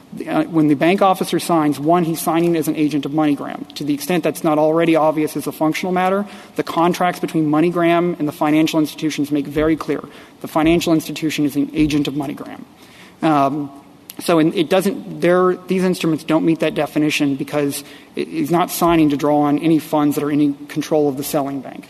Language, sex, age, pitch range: English, male, 30-49, 150-170 Hz